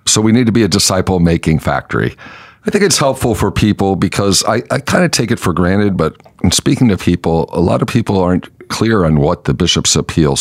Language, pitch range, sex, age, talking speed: English, 80-100 Hz, male, 50-69, 220 wpm